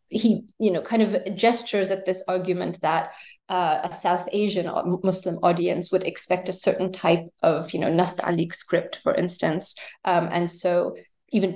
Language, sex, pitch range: English, female, 180-215 Hz